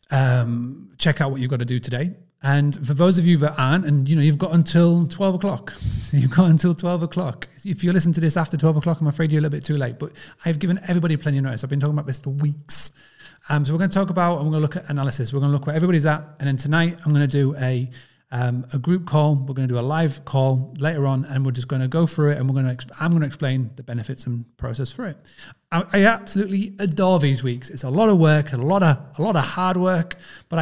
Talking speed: 280 wpm